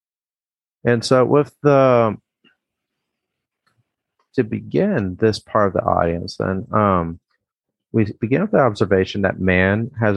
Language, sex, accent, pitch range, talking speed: English, male, American, 95-120 Hz, 125 wpm